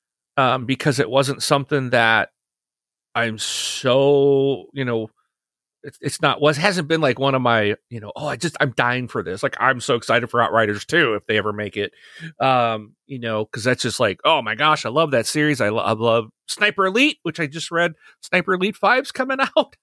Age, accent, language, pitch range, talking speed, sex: 40-59, American, English, 125-185 Hz, 210 wpm, male